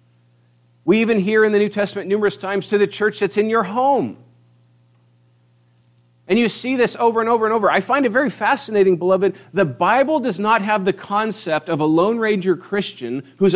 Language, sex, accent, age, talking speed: English, male, American, 50-69, 195 wpm